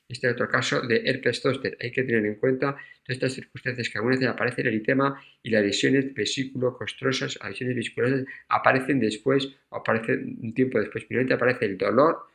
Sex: male